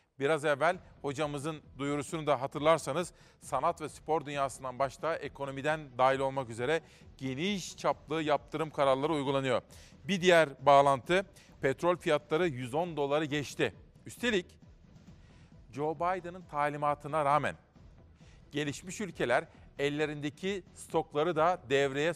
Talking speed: 105 wpm